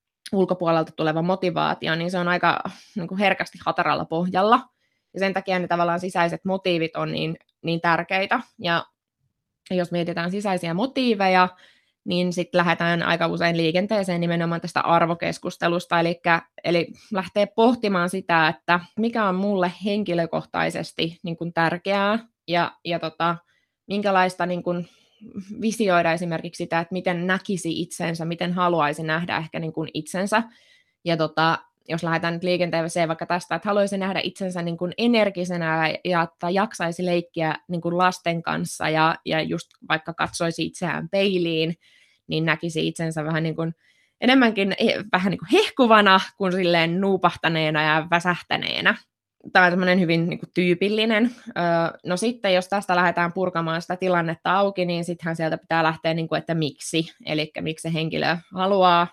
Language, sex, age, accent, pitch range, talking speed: Finnish, female, 20-39, native, 165-190 Hz, 145 wpm